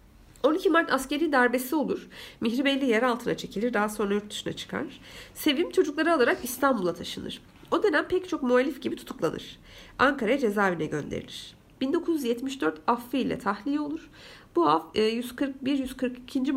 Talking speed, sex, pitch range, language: 125 wpm, female, 220-285 Hz, Turkish